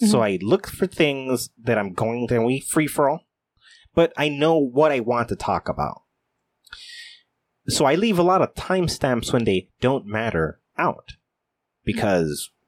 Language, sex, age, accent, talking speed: English, male, 30-49, American, 155 wpm